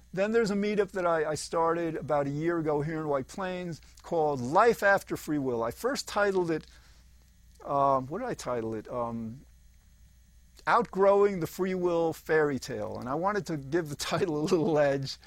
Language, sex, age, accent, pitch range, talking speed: English, male, 50-69, American, 135-195 Hz, 185 wpm